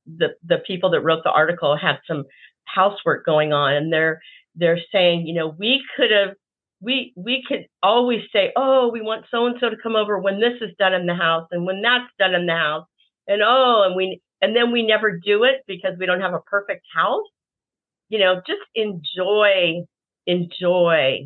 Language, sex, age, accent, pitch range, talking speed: English, female, 50-69, American, 175-235 Hz, 200 wpm